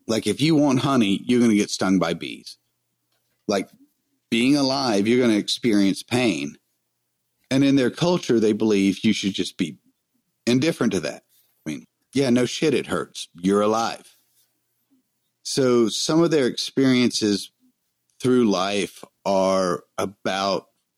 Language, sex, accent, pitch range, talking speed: English, male, American, 105-135 Hz, 145 wpm